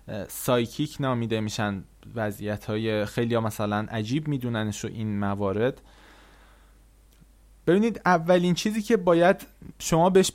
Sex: male